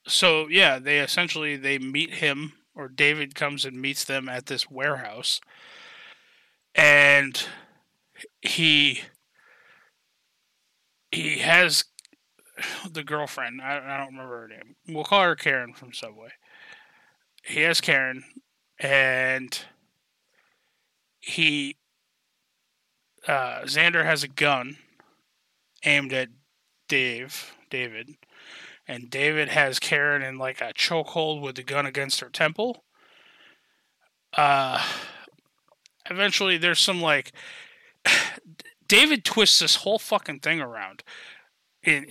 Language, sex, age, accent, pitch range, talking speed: English, male, 30-49, American, 135-185 Hz, 105 wpm